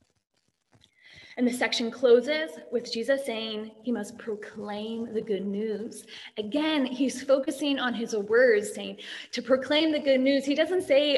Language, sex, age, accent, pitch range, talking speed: English, female, 20-39, American, 230-285 Hz, 150 wpm